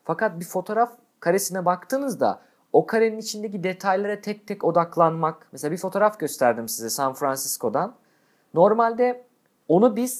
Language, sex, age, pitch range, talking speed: Turkish, male, 50-69, 165-235 Hz, 130 wpm